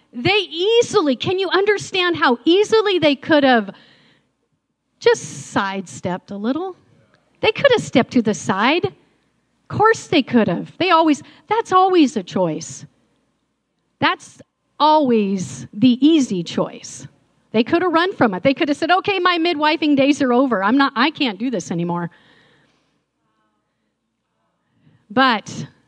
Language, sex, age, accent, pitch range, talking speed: English, female, 40-59, American, 215-315 Hz, 140 wpm